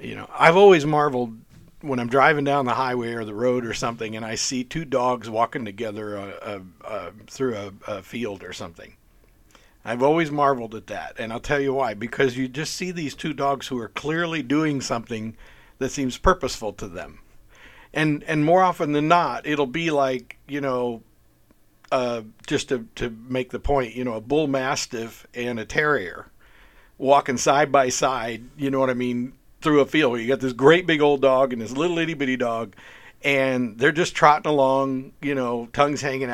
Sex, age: male, 50-69